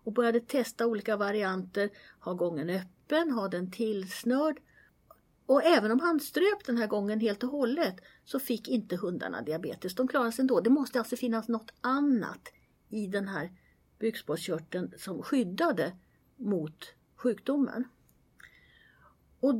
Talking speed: 140 wpm